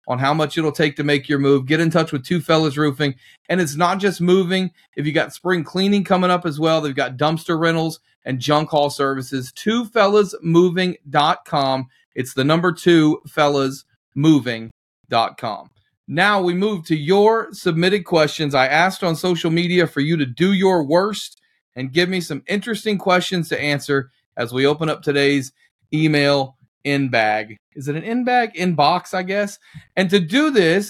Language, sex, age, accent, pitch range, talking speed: English, male, 40-59, American, 140-180 Hz, 175 wpm